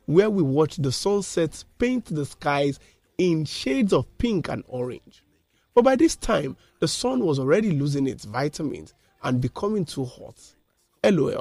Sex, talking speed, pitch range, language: male, 160 wpm, 130-175 Hz, English